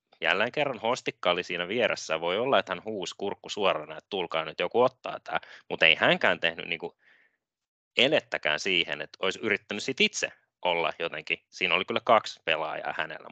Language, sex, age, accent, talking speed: Finnish, male, 20-39, native, 175 wpm